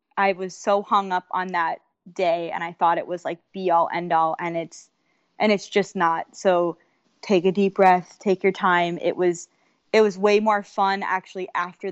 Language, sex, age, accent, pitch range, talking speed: English, female, 20-39, American, 175-200 Hz, 205 wpm